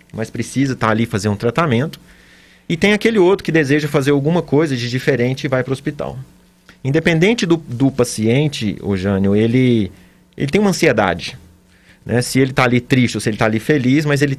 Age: 30-49